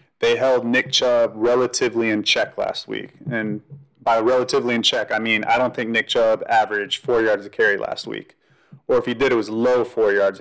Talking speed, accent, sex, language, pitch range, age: 215 wpm, American, male, English, 105-135 Hz, 30-49